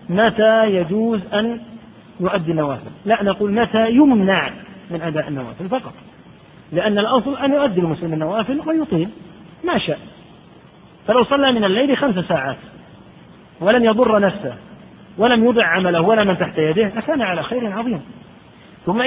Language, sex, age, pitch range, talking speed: Arabic, male, 40-59, 175-235 Hz, 135 wpm